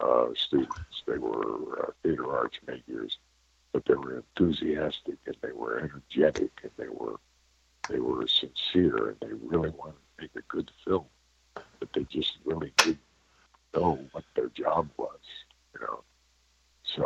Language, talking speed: English, 155 wpm